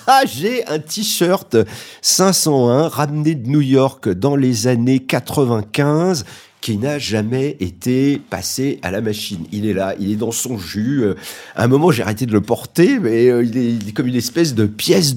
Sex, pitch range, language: male, 105-145 Hz, French